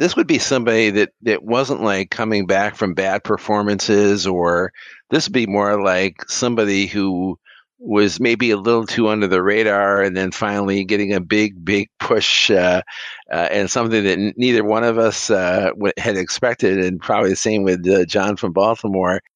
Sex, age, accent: male, 50-69, American